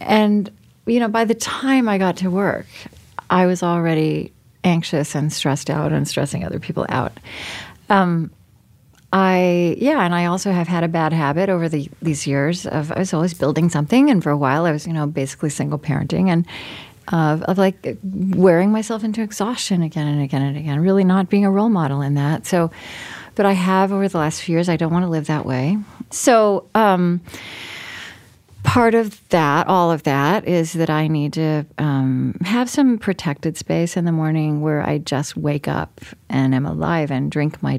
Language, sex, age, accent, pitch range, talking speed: English, female, 40-59, American, 150-190 Hz, 195 wpm